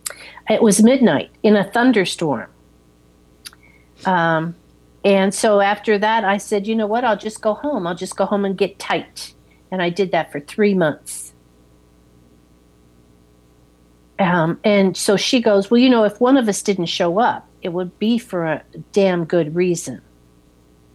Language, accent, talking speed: English, American, 165 wpm